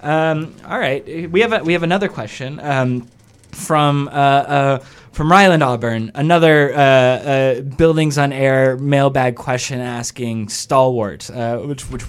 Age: 20-39